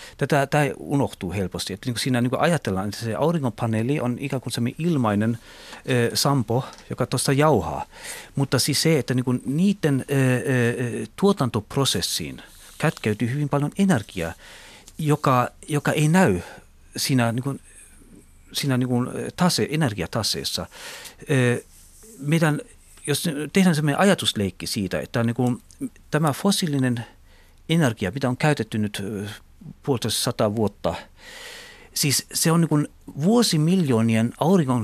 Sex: male